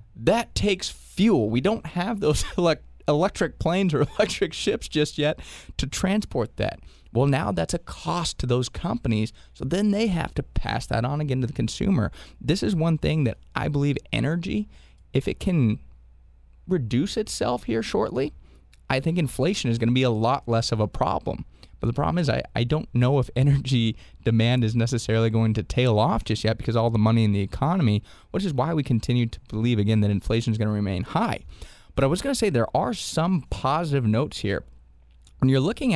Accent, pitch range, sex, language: American, 110-145 Hz, male, English